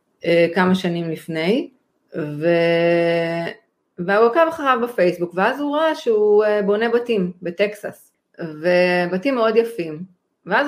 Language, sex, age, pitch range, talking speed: Hebrew, female, 30-49, 170-220 Hz, 105 wpm